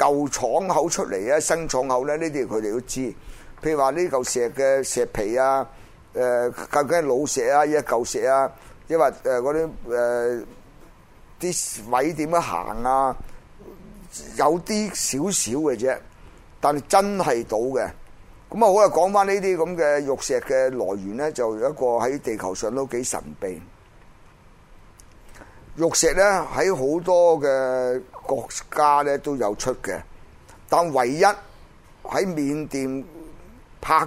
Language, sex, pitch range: Chinese, male, 120-160 Hz